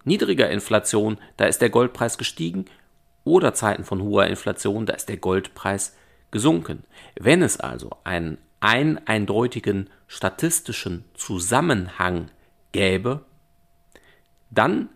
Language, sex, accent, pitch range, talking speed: German, male, German, 95-125 Hz, 105 wpm